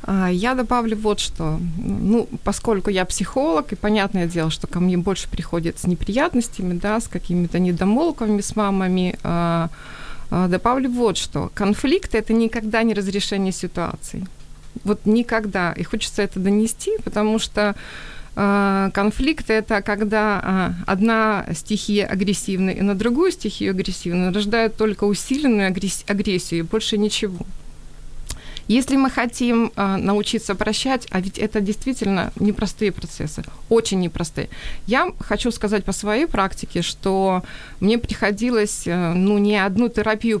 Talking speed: 130 wpm